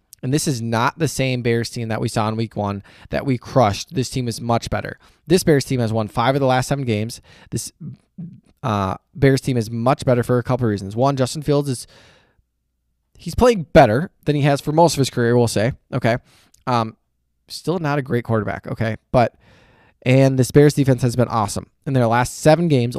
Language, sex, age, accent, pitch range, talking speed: English, male, 20-39, American, 115-135 Hz, 215 wpm